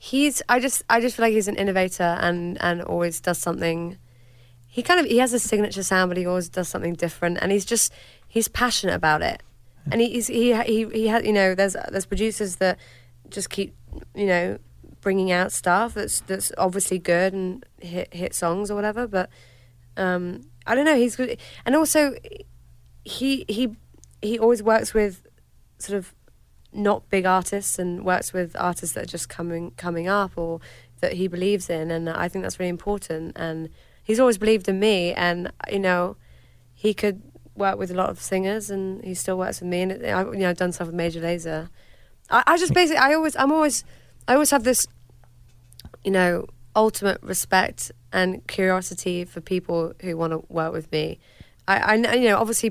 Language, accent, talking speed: English, British, 195 wpm